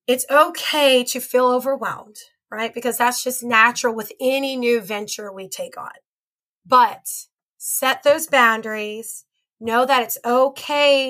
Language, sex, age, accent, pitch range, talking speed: English, female, 30-49, American, 230-275 Hz, 135 wpm